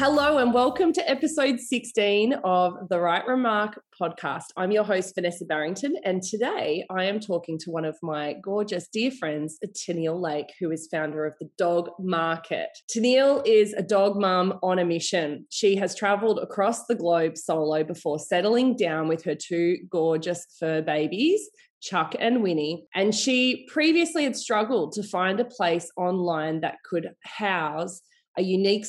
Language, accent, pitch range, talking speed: English, Australian, 165-215 Hz, 165 wpm